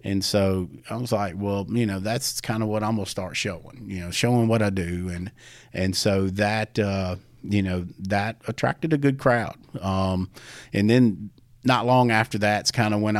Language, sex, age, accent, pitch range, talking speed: English, male, 40-59, American, 95-115 Hz, 205 wpm